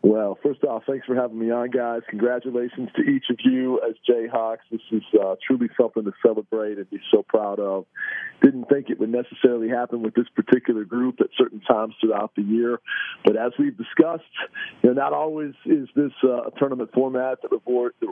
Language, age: English, 40-59